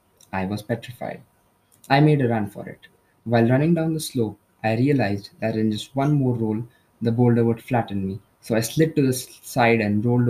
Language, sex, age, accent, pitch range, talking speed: English, male, 20-39, Indian, 105-130 Hz, 205 wpm